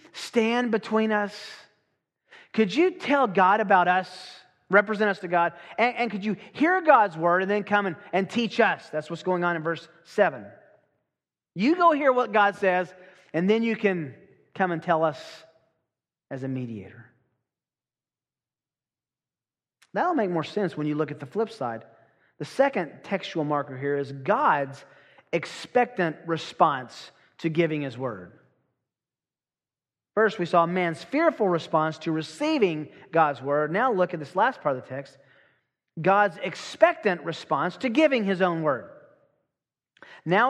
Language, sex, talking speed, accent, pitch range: English, male, 155 wpm, American, 155-210 Hz